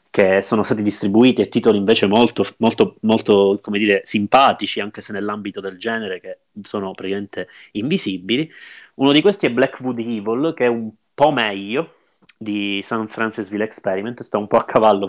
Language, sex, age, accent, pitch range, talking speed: Italian, male, 30-49, native, 100-120 Hz, 165 wpm